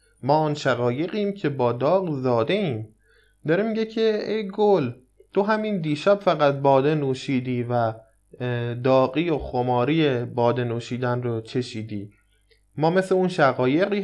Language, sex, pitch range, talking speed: Persian, male, 120-170 Hz, 135 wpm